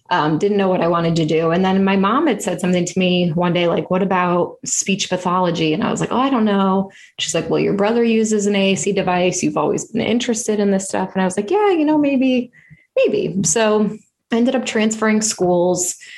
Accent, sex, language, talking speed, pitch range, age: American, female, English, 235 wpm, 180-225 Hz, 20-39